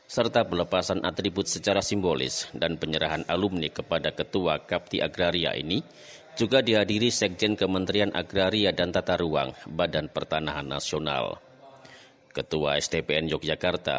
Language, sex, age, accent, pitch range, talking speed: Indonesian, male, 40-59, native, 85-110 Hz, 115 wpm